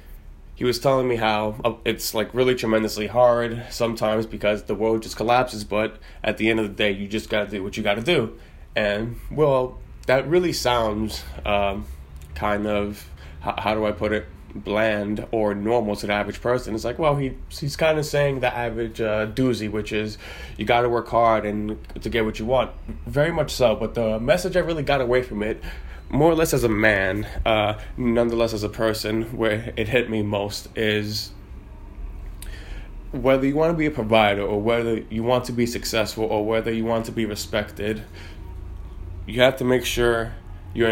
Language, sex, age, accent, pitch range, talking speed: English, male, 20-39, American, 105-120 Hz, 195 wpm